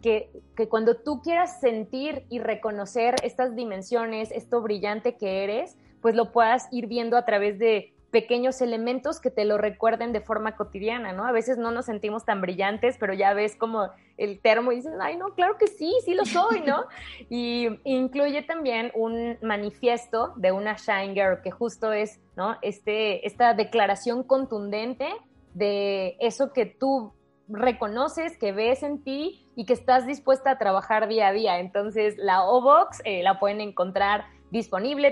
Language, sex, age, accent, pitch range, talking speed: Spanish, female, 20-39, Mexican, 205-245 Hz, 165 wpm